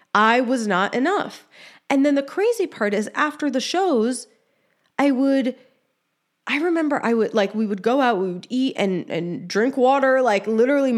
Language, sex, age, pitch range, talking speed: English, female, 20-39, 190-255 Hz, 180 wpm